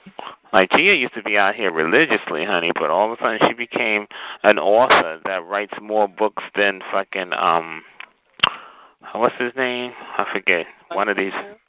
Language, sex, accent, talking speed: English, male, American, 170 wpm